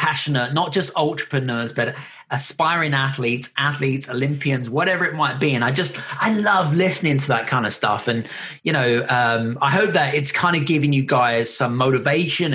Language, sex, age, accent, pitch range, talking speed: English, male, 20-39, British, 125-150 Hz, 185 wpm